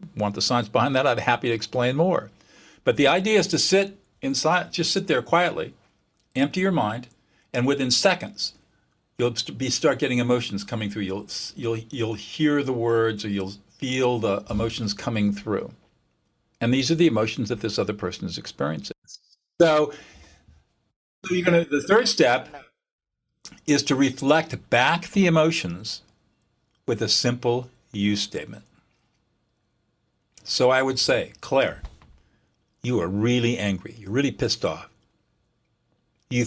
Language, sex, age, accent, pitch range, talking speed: English, male, 50-69, American, 105-145 Hz, 150 wpm